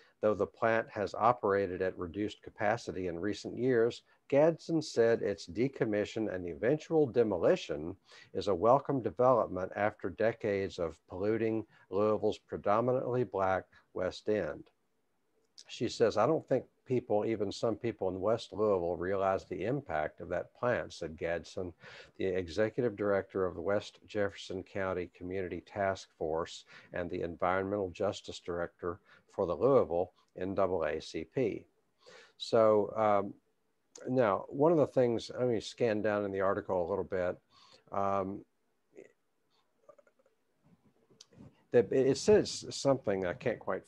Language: English